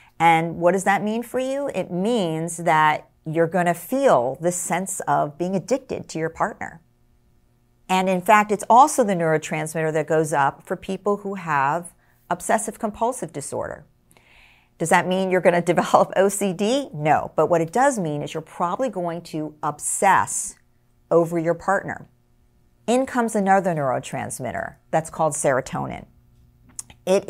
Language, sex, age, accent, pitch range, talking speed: English, female, 50-69, American, 145-195 Hz, 155 wpm